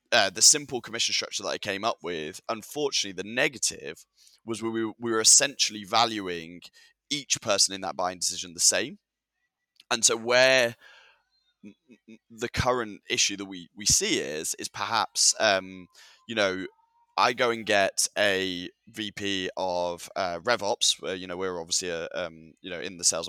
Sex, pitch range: male, 95-120 Hz